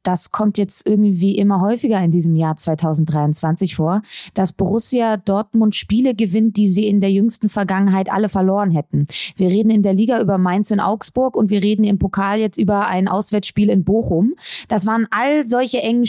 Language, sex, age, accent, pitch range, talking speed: German, female, 20-39, German, 185-225 Hz, 185 wpm